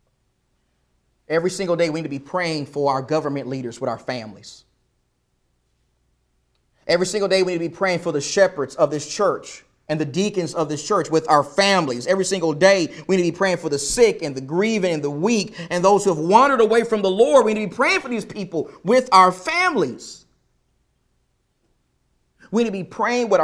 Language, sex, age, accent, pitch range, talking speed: English, male, 30-49, American, 155-230 Hz, 205 wpm